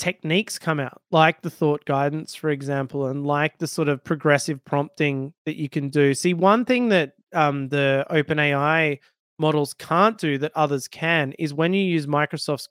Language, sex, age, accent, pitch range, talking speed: English, male, 20-39, Australian, 145-170 Hz, 185 wpm